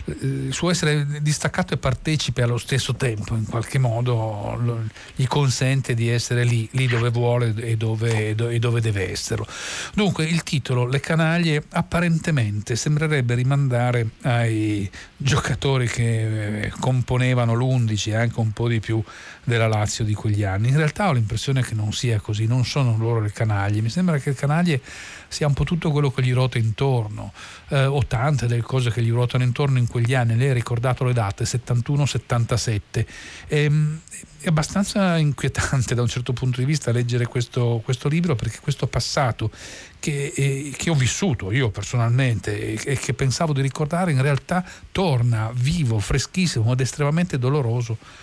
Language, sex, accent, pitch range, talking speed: Italian, male, native, 115-145 Hz, 165 wpm